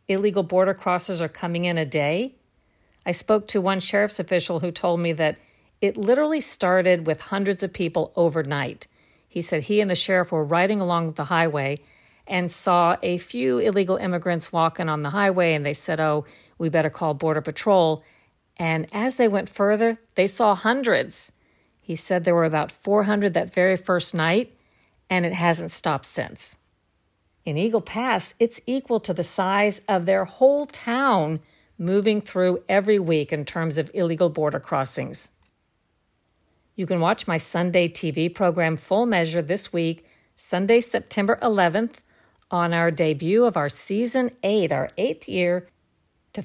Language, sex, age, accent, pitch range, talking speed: English, female, 50-69, American, 165-205 Hz, 165 wpm